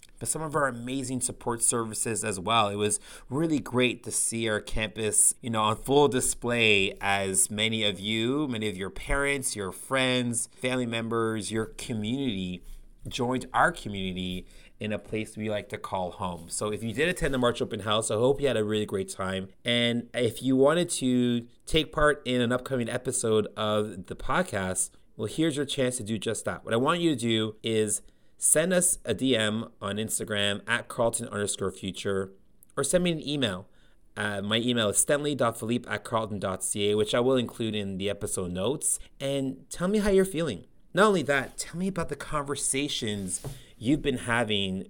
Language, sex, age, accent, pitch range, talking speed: English, male, 30-49, American, 105-130 Hz, 185 wpm